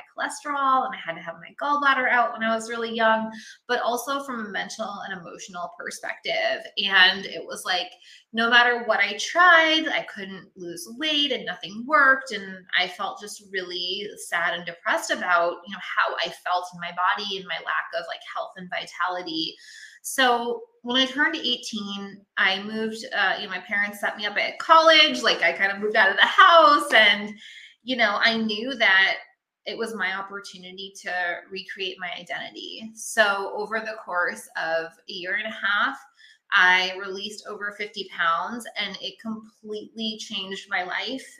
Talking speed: 180 wpm